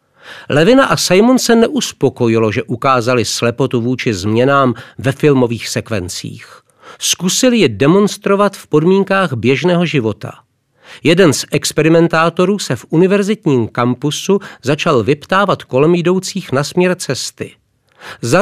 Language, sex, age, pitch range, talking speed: Czech, male, 50-69, 125-190 Hz, 115 wpm